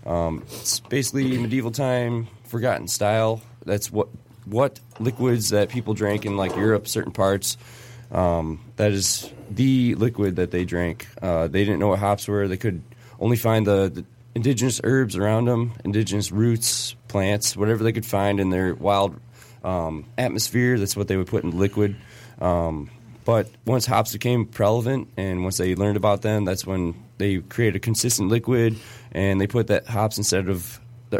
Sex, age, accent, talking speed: male, 20-39, American, 175 wpm